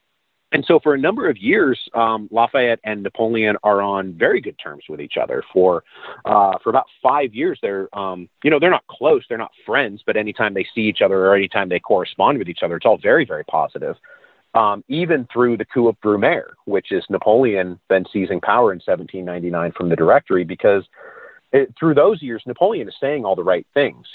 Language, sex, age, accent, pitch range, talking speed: English, male, 30-49, American, 95-120 Hz, 205 wpm